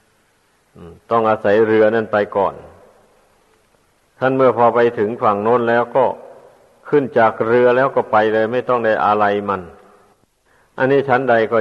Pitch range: 100-120 Hz